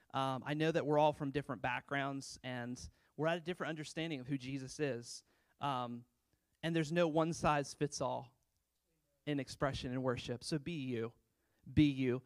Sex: male